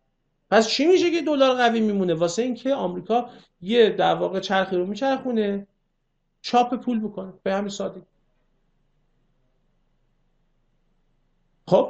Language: Persian